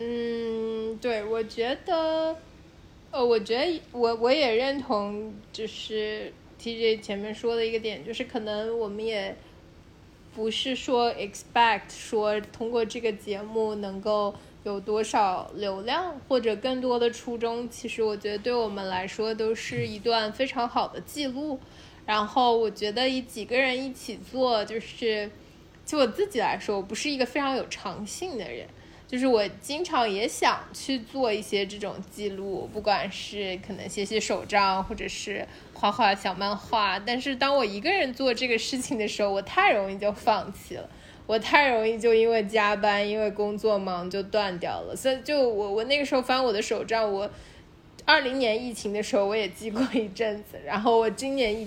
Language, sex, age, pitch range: Chinese, female, 20-39, 210-250 Hz